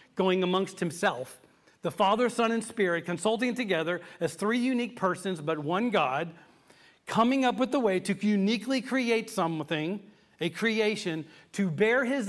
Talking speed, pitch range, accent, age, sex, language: 150 wpm, 170-220 Hz, American, 40-59, male, English